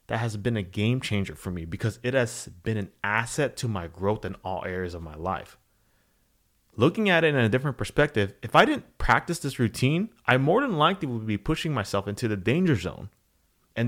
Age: 30-49